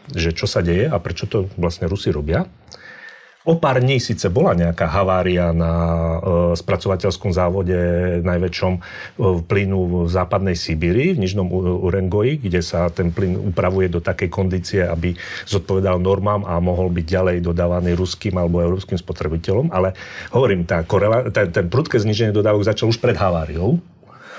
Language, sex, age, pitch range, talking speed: Slovak, male, 40-59, 90-120 Hz, 160 wpm